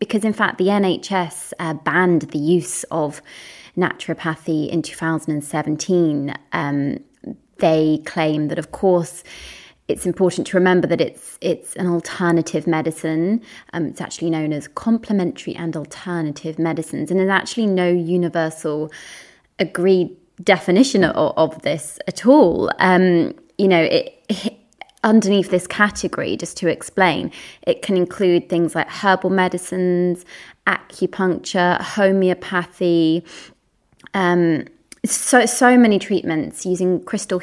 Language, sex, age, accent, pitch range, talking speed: English, female, 20-39, British, 165-195 Hz, 125 wpm